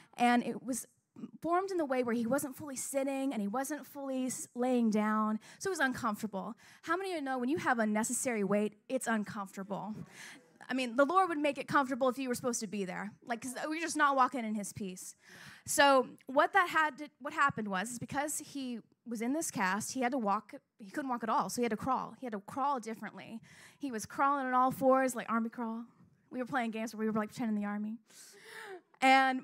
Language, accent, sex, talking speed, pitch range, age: English, American, female, 230 wpm, 220-280 Hz, 20-39